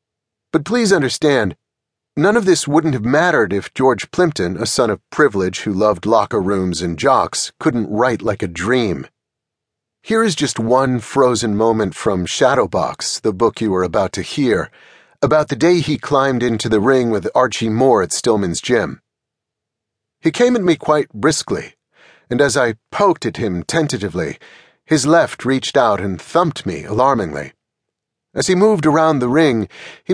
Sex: male